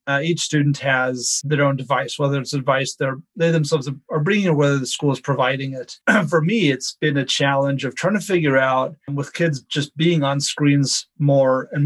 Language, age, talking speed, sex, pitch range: English, 30-49, 220 wpm, male, 140-160 Hz